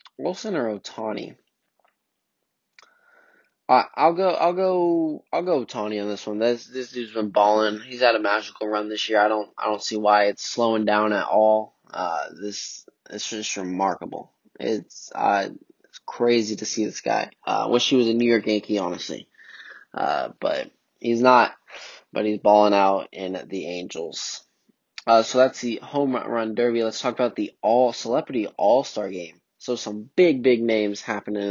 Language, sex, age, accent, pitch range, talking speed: English, male, 20-39, American, 105-130 Hz, 175 wpm